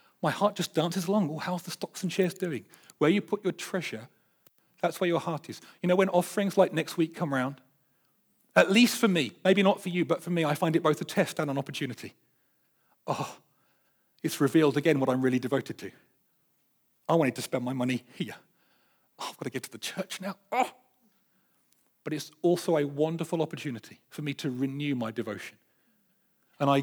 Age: 40-59